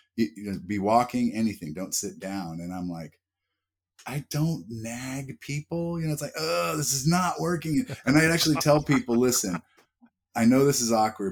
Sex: male